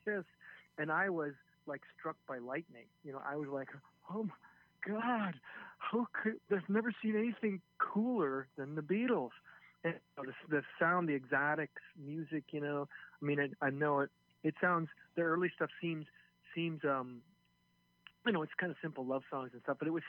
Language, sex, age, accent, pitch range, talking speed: English, male, 40-59, American, 130-165 Hz, 190 wpm